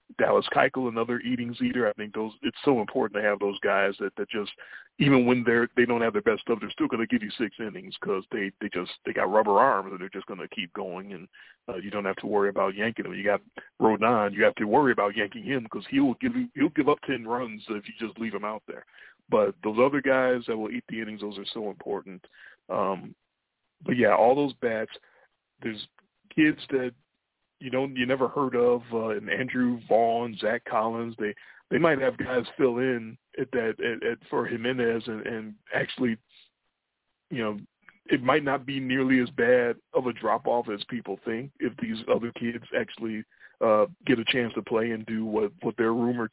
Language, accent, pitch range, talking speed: English, American, 110-130 Hz, 220 wpm